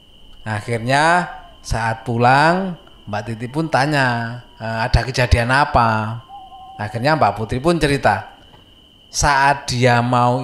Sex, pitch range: male, 115-150 Hz